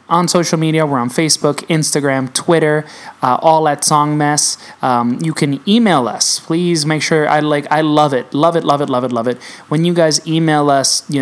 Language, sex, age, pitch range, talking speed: English, male, 20-39, 130-155 Hz, 215 wpm